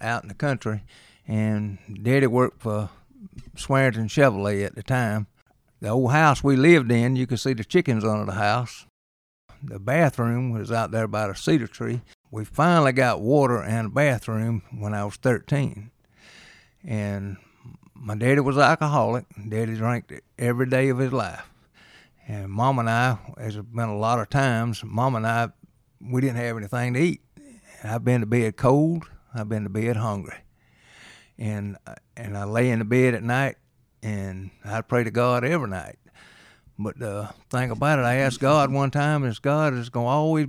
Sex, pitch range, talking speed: male, 110-135 Hz, 180 wpm